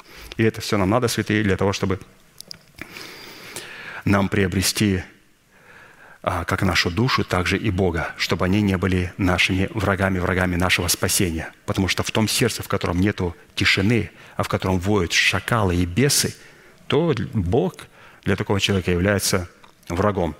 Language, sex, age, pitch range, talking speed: Russian, male, 30-49, 90-110 Hz, 145 wpm